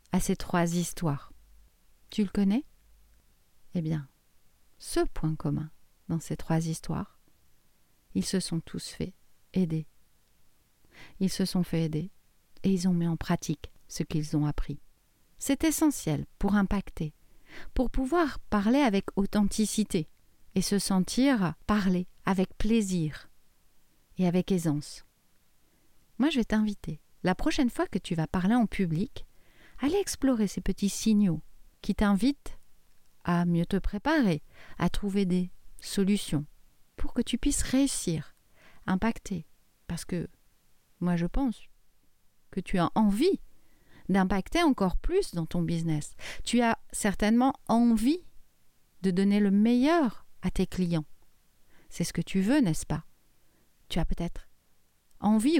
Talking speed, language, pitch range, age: 135 wpm, French, 160-220 Hz, 40-59